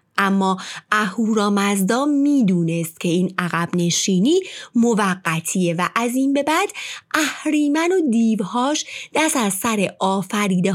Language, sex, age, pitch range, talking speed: Persian, female, 30-49, 185-290 Hz, 125 wpm